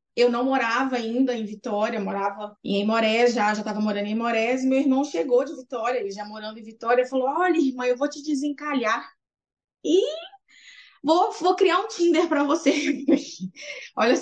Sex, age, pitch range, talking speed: female, 20-39, 240-300 Hz, 175 wpm